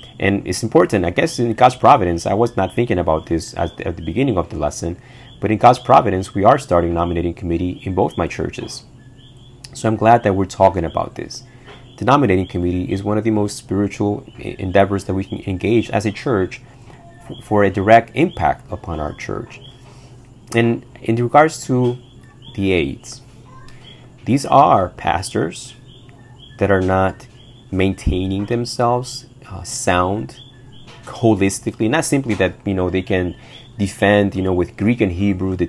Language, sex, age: English, male, 30-49